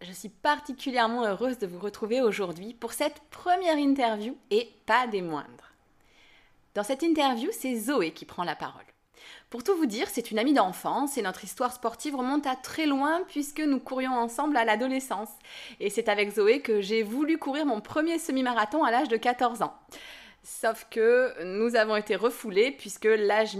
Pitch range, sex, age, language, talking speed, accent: 210-265 Hz, female, 20-39, French, 180 wpm, French